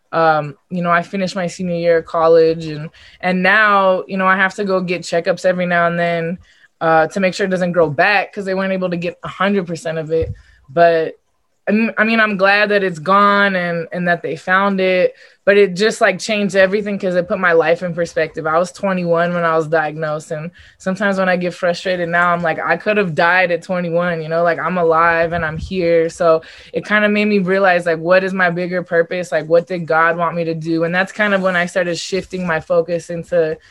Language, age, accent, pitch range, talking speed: English, 20-39, American, 165-190 Hz, 235 wpm